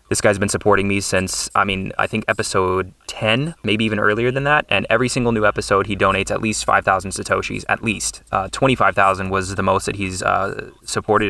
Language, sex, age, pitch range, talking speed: English, male, 20-39, 95-110 Hz, 205 wpm